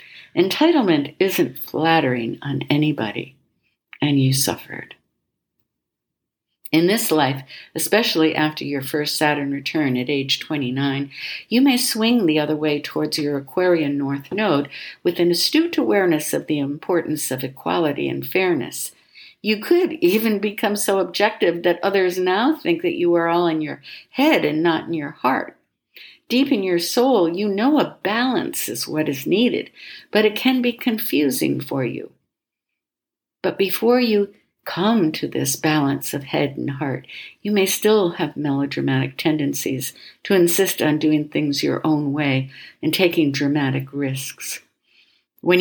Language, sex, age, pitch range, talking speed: English, female, 60-79, 145-195 Hz, 150 wpm